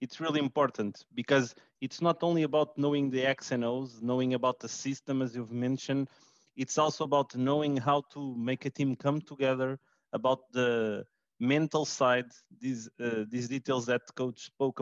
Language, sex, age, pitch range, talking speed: English, male, 30-49, 125-140 Hz, 170 wpm